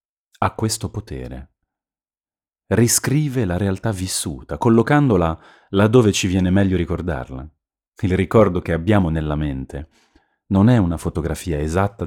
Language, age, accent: Italian, 30-49, native